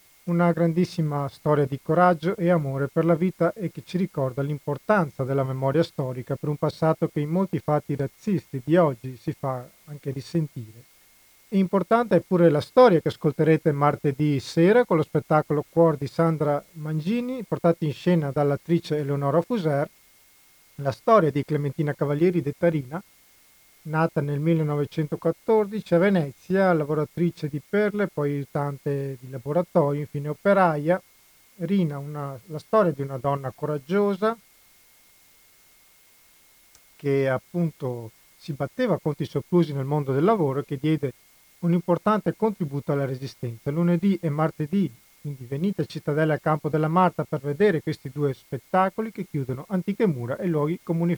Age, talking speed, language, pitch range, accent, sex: 40-59, 145 wpm, Italian, 140-175 Hz, native, male